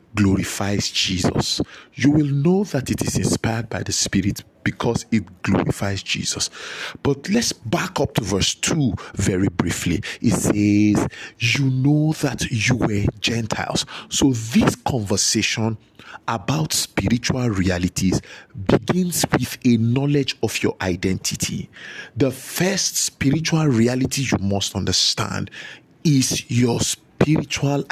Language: English